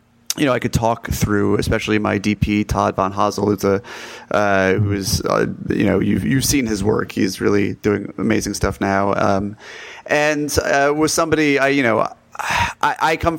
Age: 30-49